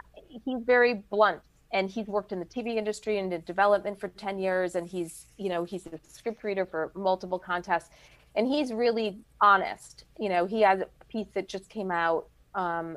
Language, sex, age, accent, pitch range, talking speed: English, female, 30-49, American, 185-225 Hz, 195 wpm